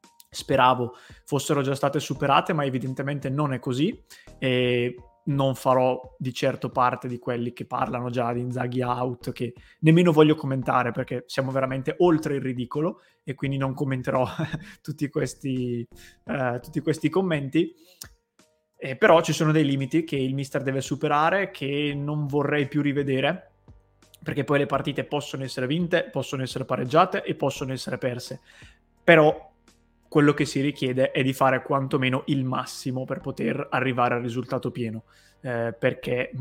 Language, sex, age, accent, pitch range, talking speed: Italian, male, 20-39, native, 125-150 Hz, 150 wpm